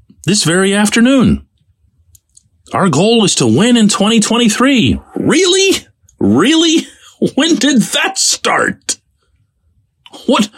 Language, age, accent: English, 40-59, American